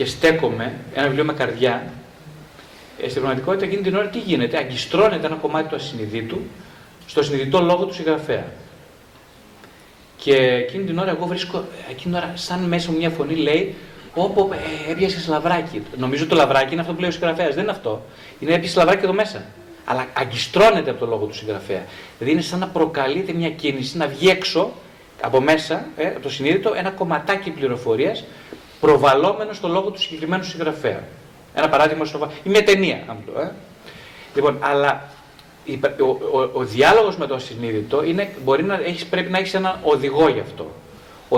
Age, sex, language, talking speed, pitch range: 30-49, male, Greek, 170 wpm, 145-190 Hz